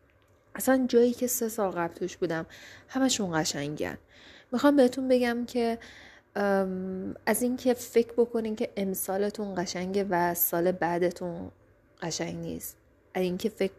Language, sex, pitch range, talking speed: Persian, female, 170-215 Hz, 130 wpm